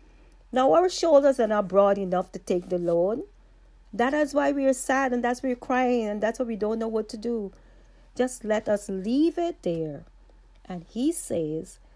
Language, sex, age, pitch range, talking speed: English, female, 40-59, 185-255 Hz, 200 wpm